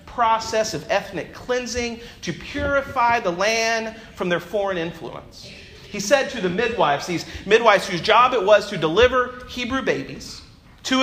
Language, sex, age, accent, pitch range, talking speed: English, male, 40-59, American, 190-250 Hz, 150 wpm